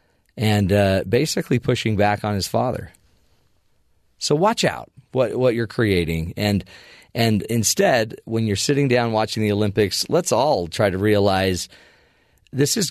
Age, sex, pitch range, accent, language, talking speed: 40-59, male, 95-120 Hz, American, English, 150 wpm